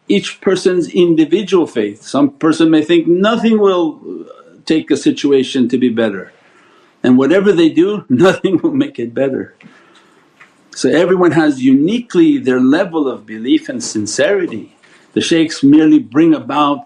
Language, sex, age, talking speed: English, male, 50-69, 140 wpm